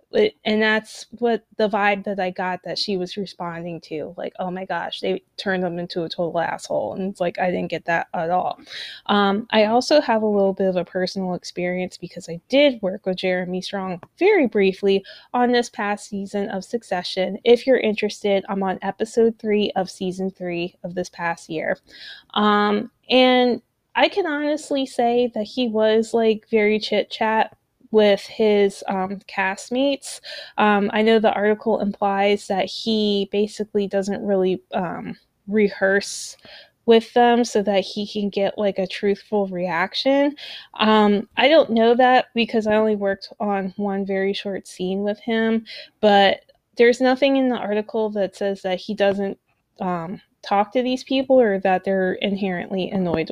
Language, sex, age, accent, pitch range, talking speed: English, female, 20-39, American, 190-225 Hz, 170 wpm